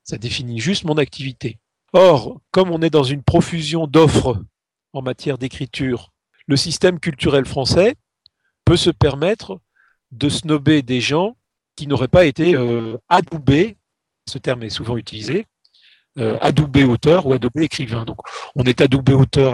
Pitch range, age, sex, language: 115-150 Hz, 40-59, male, French